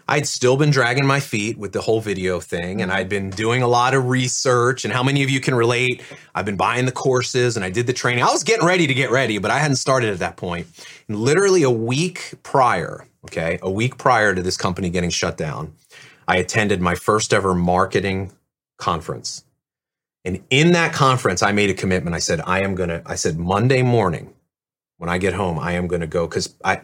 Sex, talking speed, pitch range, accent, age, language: male, 215 wpm, 95-130 Hz, American, 30-49, English